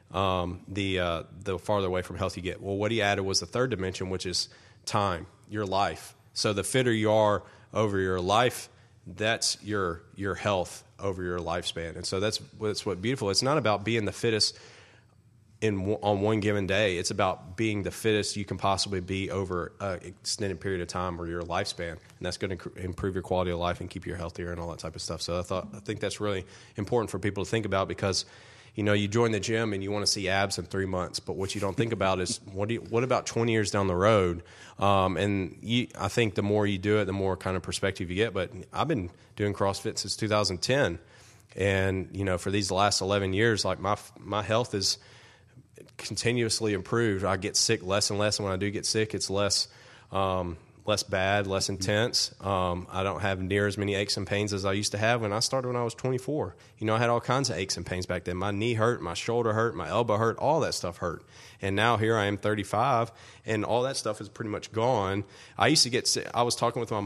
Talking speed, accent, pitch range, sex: 240 wpm, American, 95-110 Hz, male